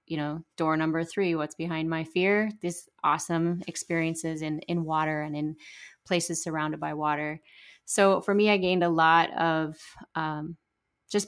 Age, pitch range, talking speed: 20-39, 160-190 Hz, 165 wpm